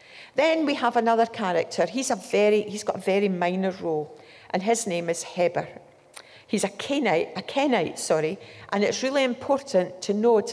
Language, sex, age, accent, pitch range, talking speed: English, female, 60-79, British, 180-230 Hz, 175 wpm